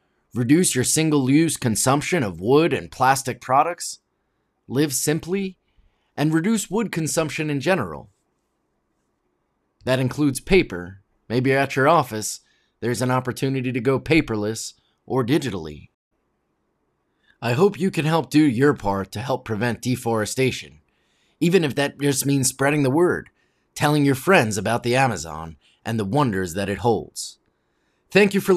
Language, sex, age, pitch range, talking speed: English, male, 30-49, 115-160 Hz, 140 wpm